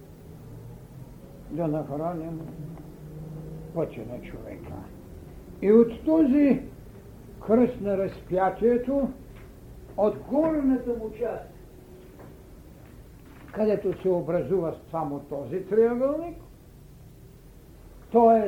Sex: male